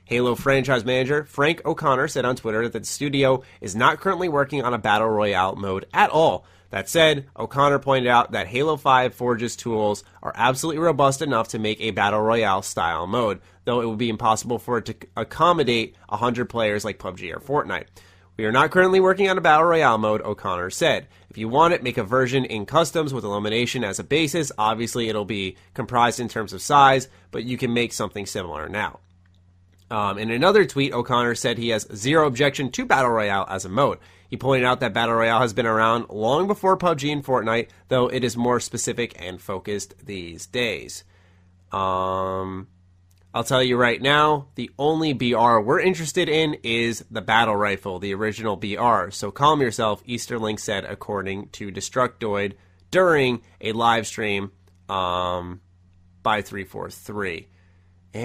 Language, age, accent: English, 30-49, American